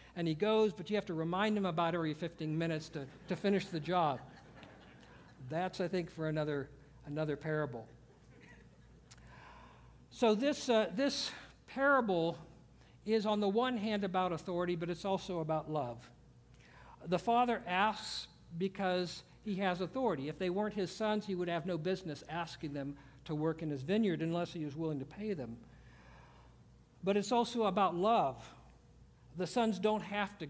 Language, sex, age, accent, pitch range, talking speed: English, male, 60-79, American, 155-195 Hz, 165 wpm